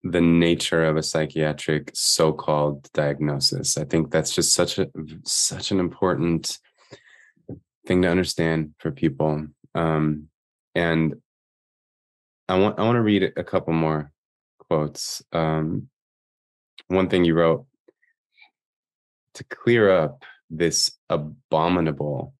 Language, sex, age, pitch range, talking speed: English, male, 20-39, 80-90 Hz, 115 wpm